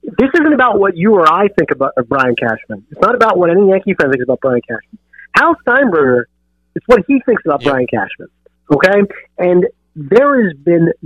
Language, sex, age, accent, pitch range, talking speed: English, male, 40-59, American, 150-200 Hz, 200 wpm